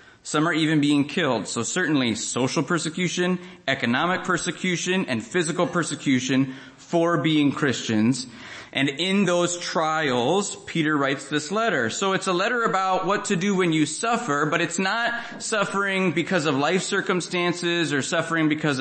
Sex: male